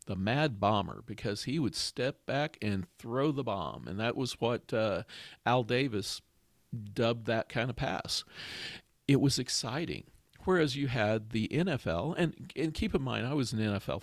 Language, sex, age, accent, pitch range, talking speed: English, male, 50-69, American, 105-130 Hz, 175 wpm